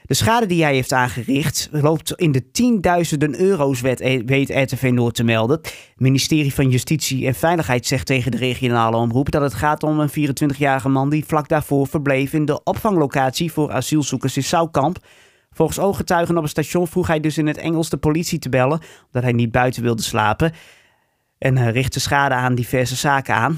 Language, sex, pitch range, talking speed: Dutch, male, 130-170 Hz, 185 wpm